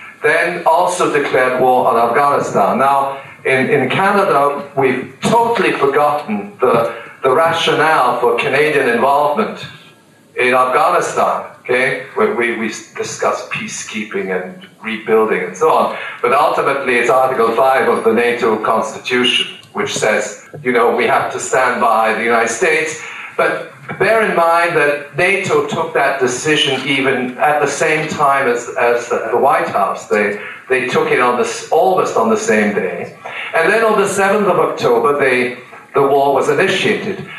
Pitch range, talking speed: 125-170 Hz, 150 wpm